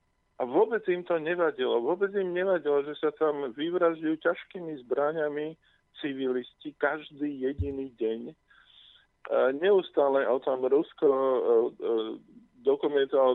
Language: Slovak